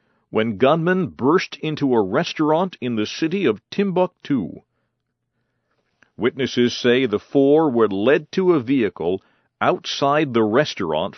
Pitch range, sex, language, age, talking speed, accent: 115-155 Hz, male, English, 50-69, 125 wpm, American